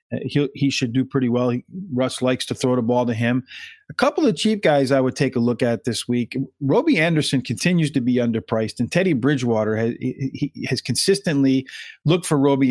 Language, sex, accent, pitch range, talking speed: English, male, American, 125-155 Hz, 215 wpm